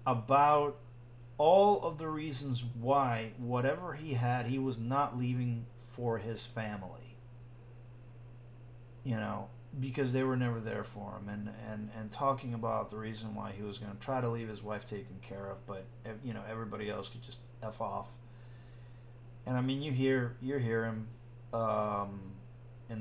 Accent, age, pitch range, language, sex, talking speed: American, 40-59, 110-120 Hz, English, male, 165 wpm